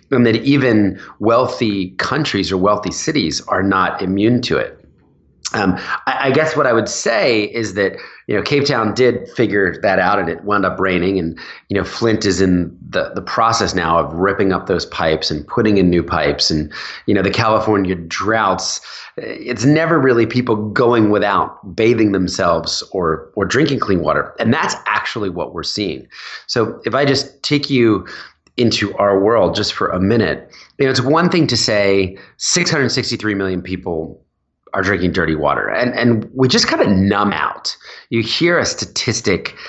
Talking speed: 180 wpm